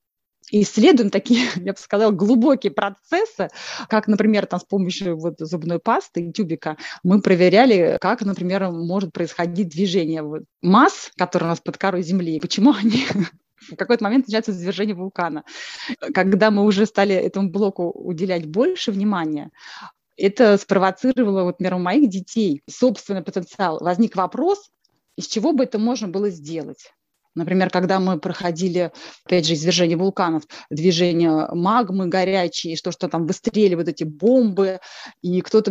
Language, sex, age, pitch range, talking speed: Russian, female, 20-39, 180-230 Hz, 140 wpm